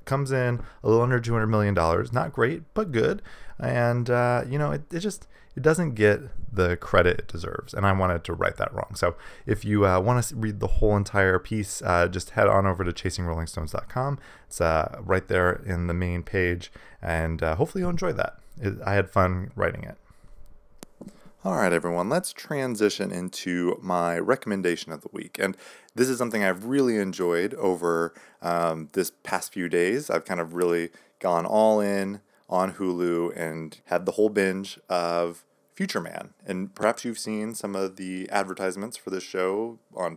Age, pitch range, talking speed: 20-39, 85-110 Hz, 180 wpm